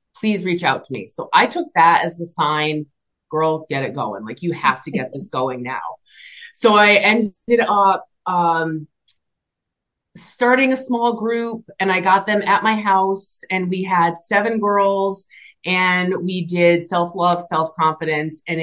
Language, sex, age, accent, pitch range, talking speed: English, female, 30-49, American, 155-190 Hz, 165 wpm